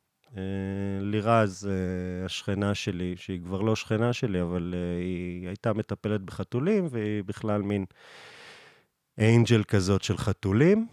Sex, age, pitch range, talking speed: male, 30-49, 100-135 Hz, 125 wpm